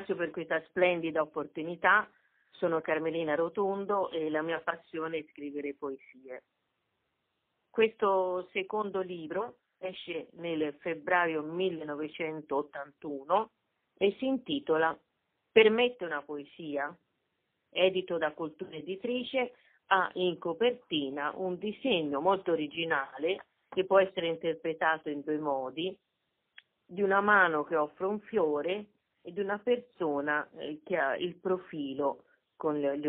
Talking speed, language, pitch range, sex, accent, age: 110 wpm, Italian, 155-195 Hz, female, native, 40-59